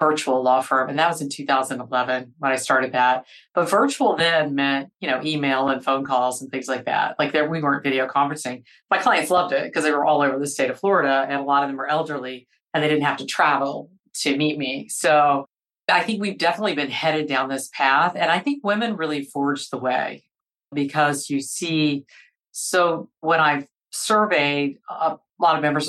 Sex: female